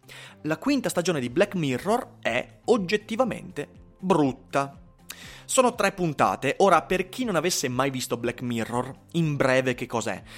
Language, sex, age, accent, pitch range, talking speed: Italian, male, 30-49, native, 130-205 Hz, 145 wpm